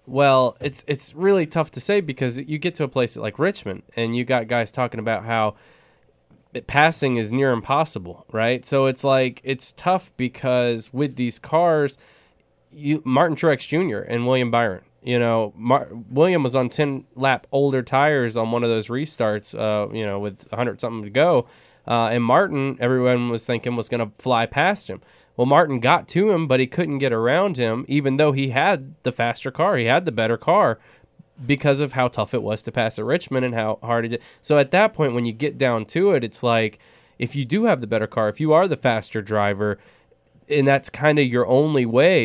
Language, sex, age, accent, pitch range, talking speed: English, male, 20-39, American, 115-145 Hz, 210 wpm